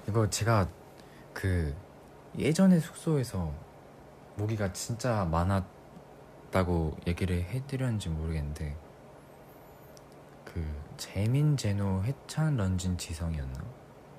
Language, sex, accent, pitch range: Korean, male, native, 80-110 Hz